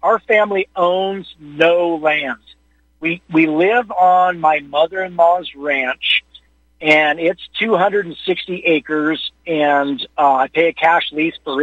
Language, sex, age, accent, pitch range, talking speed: English, male, 50-69, American, 150-185 Hz, 125 wpm